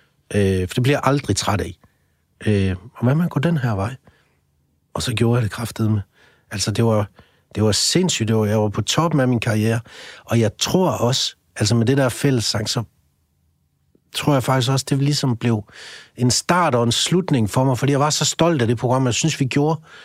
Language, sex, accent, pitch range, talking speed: Danish, male, native, 115-145 Hz, 220 wpm